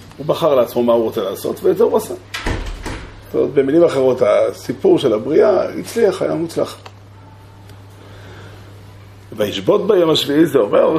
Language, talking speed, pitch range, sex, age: Hebrew, 140 wpm, 100-125 Hz, male, 40-59